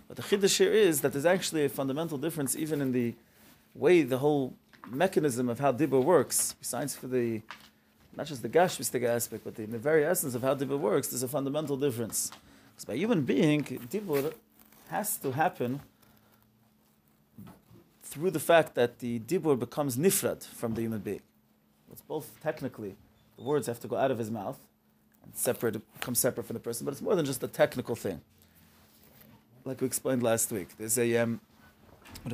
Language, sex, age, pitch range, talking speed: English, male, 30-49, 120-155 Hz, 185 wpm